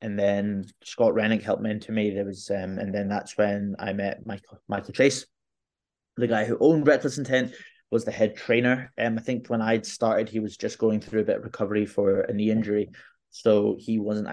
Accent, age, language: British, 20-39, English